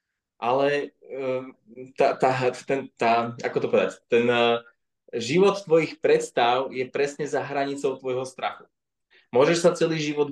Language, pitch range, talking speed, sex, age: Slovak, 125-160 Hz, 140 wpm, male, 20-39